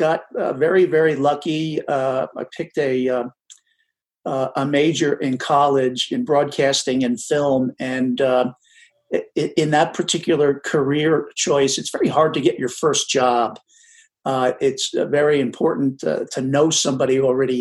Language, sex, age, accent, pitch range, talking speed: English, male, 50-69, American, 135-175 Hz, 145 wpm